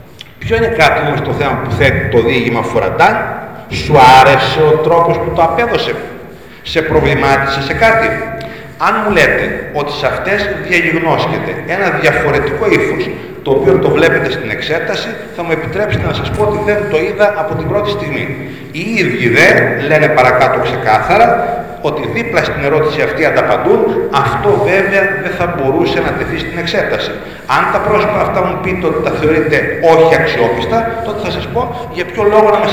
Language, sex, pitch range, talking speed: Greek, male, 135-195 Hz, 170 wpm